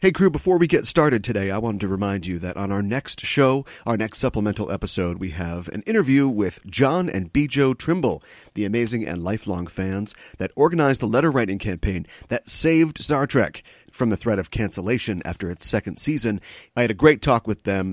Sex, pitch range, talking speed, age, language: male, 95-135 Hz, 210 wpm, 40-59, English